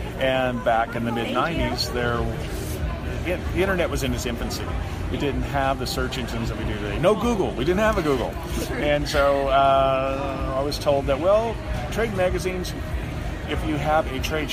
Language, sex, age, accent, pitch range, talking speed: English, male, 40-59, American, 110-140 Hz, 185 wpm